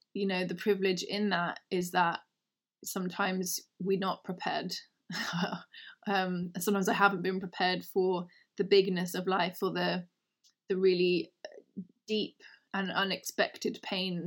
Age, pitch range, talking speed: 20-39, 190-230 Hz, 130 wpm